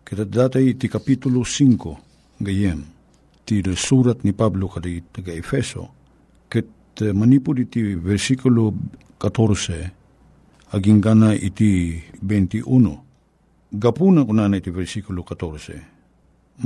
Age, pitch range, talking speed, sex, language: 50-69, 95-130 Hz, 85 wpm, male, Filipino